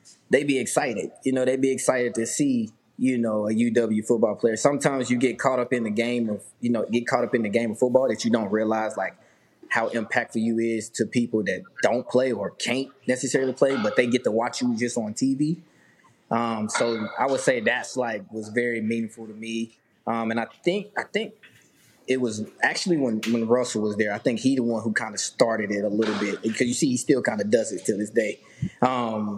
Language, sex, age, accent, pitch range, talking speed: English, male, 20-39, American, 110-130 Hz, 230 wpm